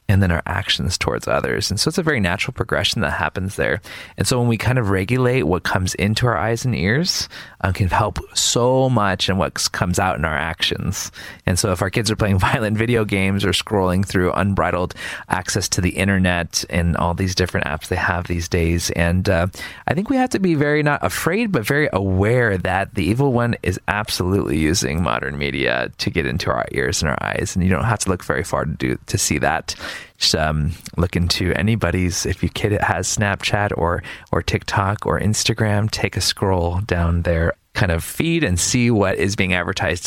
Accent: American